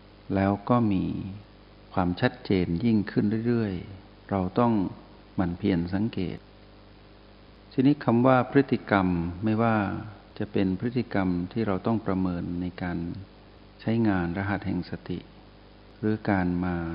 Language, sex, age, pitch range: Thai, male, 60-79, 90-105 Hz